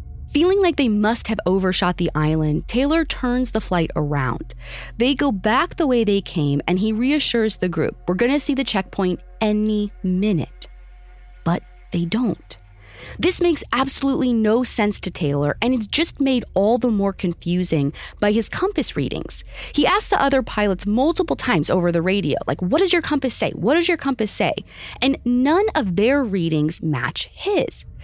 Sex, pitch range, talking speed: female, 175-280 Hz, 180 wpm